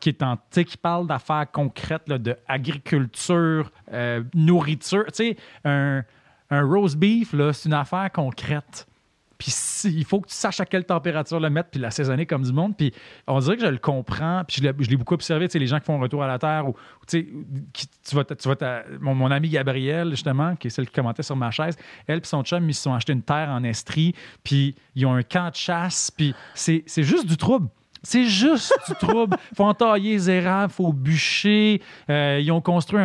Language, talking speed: French, 220 wpm